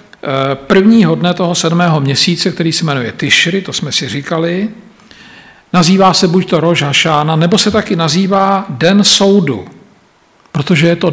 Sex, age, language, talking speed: male, 50-69, Slovak, 150 wpm